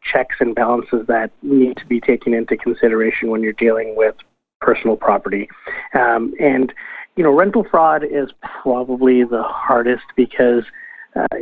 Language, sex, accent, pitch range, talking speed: English, male, American, 120-135 Hz, 145 wpm